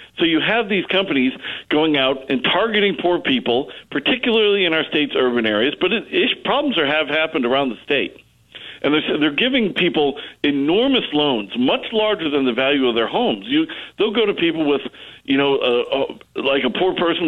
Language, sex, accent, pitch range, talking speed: English, male, American, 135-200 Hz, 195 wpm